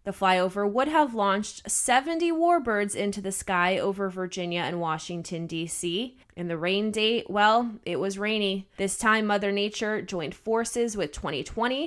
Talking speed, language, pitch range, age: 155 wpm, English, 185-250 Hz, 20-39